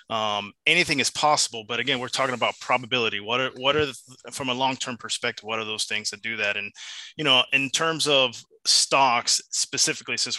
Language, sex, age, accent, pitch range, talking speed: English, male, 20-39, American, 115-140 Hz, 200 wpm